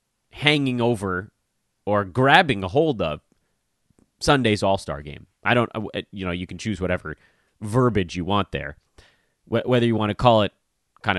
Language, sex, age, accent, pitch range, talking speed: English, male, 30-49, American, 90-140 Hz, 160 wpm